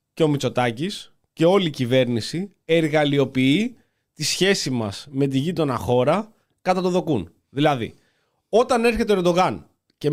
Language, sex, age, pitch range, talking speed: Greek, male, 30-49, 145-205 Hz, 140 wpm